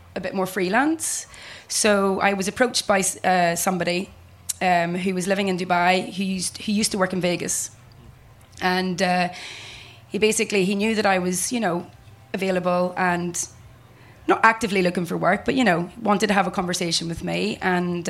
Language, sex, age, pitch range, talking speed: English, female, 20-39, 175-205 Hz, 175 wpm